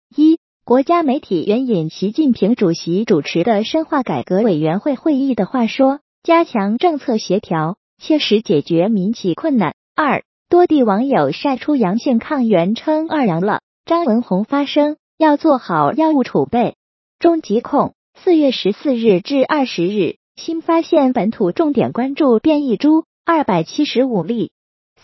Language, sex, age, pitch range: Chinese, female, 20-39, 215-310 Hz